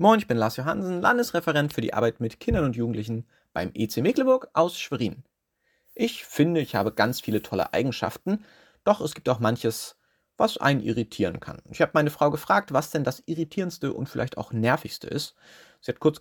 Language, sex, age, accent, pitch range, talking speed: German, male, 30-49, German, 120-165 Hz, 195 wpm